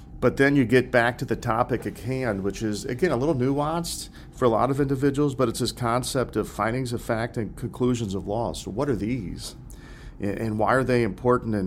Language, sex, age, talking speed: English, male, 40-59, 215 wpm